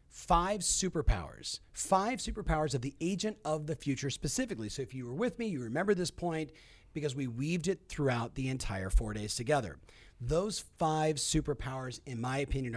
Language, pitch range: English, 120-180 Hz